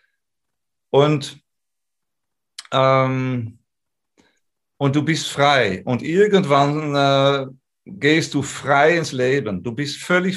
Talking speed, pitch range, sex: 100 wpm, 120-145 Hz, male